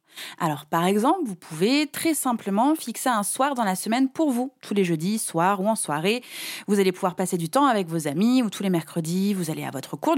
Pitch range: 180-240 Hz